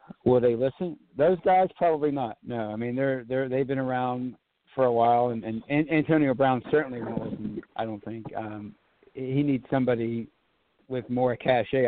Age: 60-79